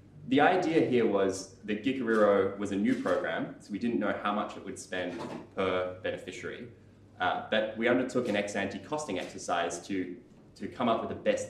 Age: 20-39